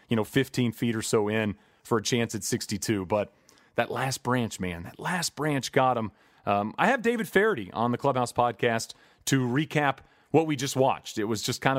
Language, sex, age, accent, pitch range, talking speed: English, male, 30-49, American, 115-145 Hz, 210 wpm